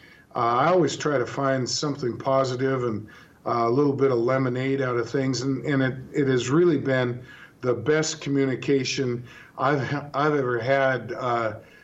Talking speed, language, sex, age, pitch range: 170 wpm, English, male, 50-69, 125-145 Hz